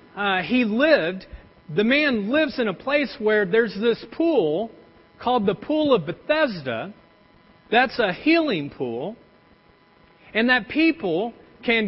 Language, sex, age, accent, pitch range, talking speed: English, male, 40-59, American, 210-280 Hz, 130 wpm